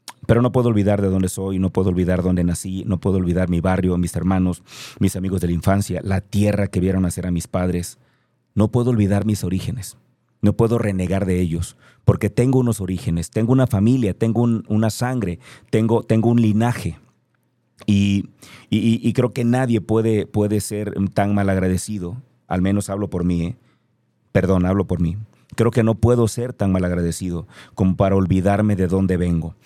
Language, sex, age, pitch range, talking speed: Spanish, male, 30-49, 95-120 Hz, 190 wpm